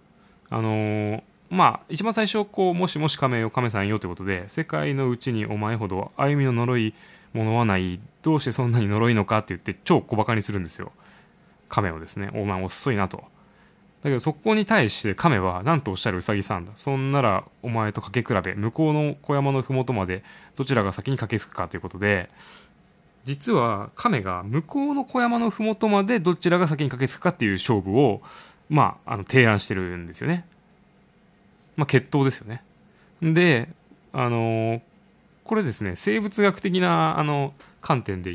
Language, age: Japanese, 20-39